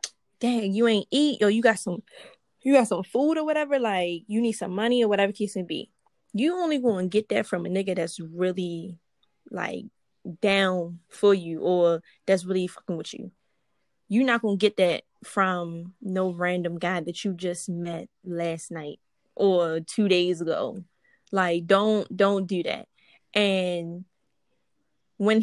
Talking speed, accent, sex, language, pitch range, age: 170 wpm, American, female, English, 180-245 Hz, 10-29